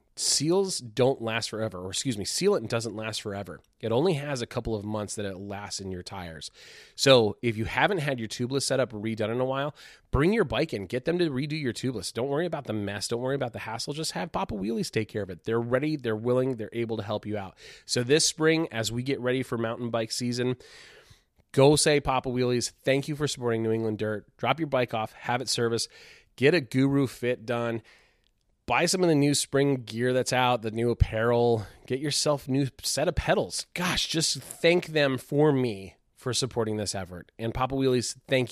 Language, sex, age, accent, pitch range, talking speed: English, male, 30-49, American, 110-135 Hz, 220 wpm